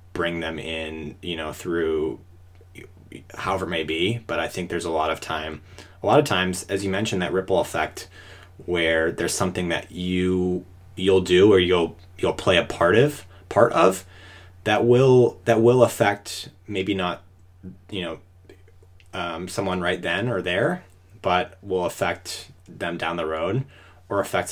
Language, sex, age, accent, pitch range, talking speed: English, male, 20-39, American, 85-95 Hz, 165 wpm